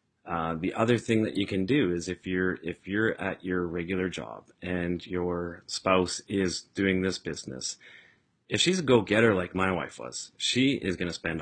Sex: male